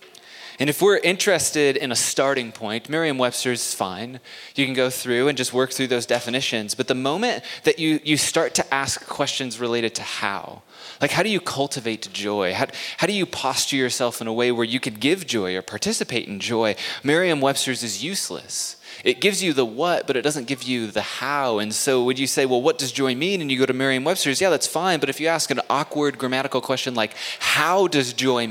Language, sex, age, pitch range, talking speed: English, male, 20-39, 115-145 Hz, 215 wpm